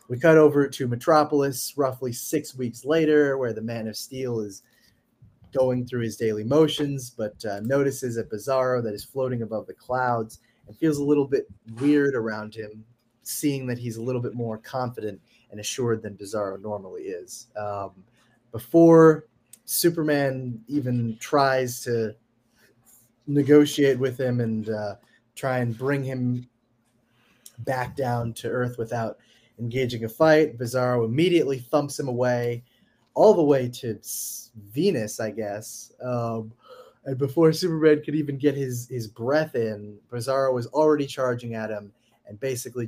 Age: 20-39